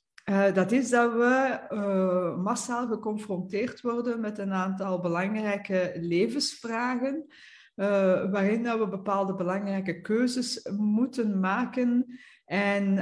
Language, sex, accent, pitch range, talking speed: Dutch, female, Dutch, 185-225 Hz, 105 wpm